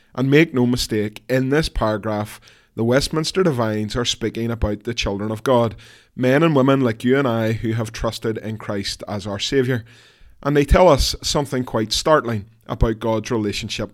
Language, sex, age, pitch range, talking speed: English, male, 20-39, 110-135 Hz, 180 wpm